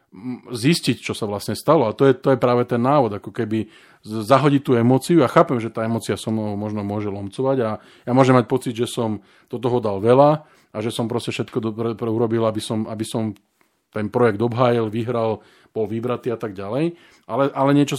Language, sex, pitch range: Slovak, male, 110-130 Hz